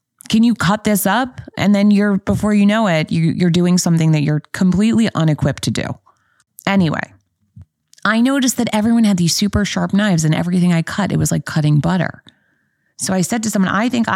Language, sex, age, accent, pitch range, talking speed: English, female, 20-39, American, 150-200 Hz, 205 wpm